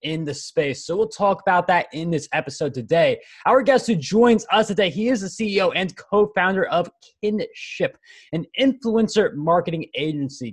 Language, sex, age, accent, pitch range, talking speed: English, male, 20-39, American, 160-215 Hz, 175 wpm